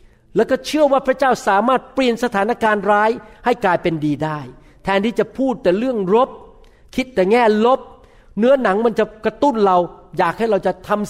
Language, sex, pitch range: Thai, male, 180-235 Hz